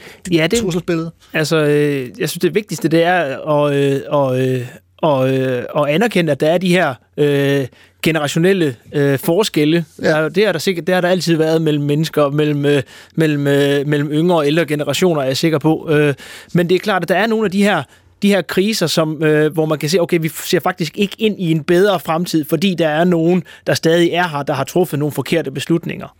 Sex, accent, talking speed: male, native, 220 wpm